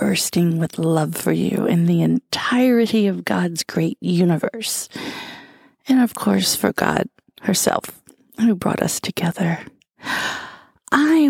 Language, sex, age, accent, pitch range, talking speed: English, female, 40-59, American, 170-230 Hz, 120 wpm